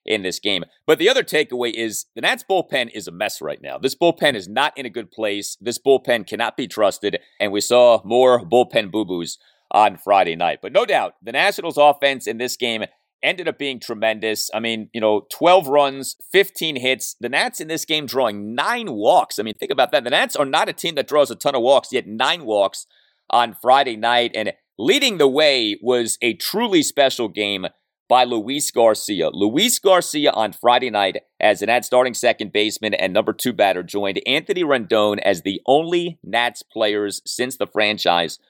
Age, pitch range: 30-49, 110-160 Hz